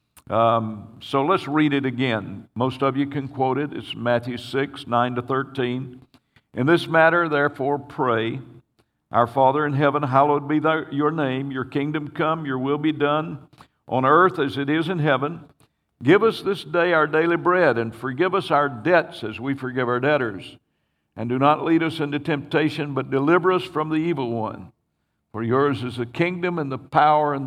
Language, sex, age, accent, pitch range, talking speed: English, male, 60-79, American, 115-145 Hz, 185 wpm